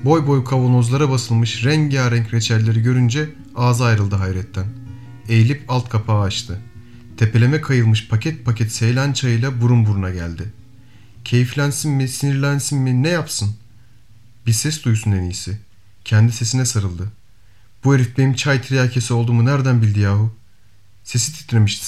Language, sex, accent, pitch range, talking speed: Turkish, male, native, 105-130 Hz, 130 wpm